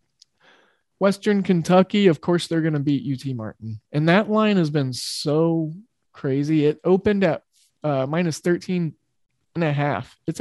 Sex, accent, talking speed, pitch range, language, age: male, American, 155 wpm, 135-180 Hz, English, 20-39